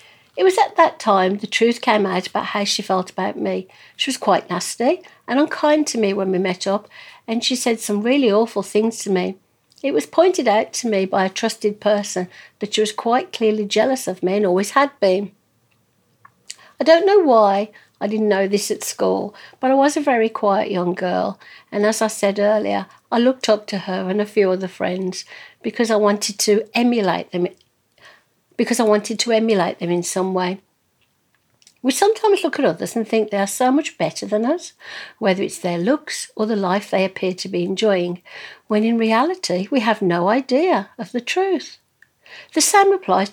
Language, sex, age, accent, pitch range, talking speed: English, female, 60-79, British, 190-245 Hz, 200 wpm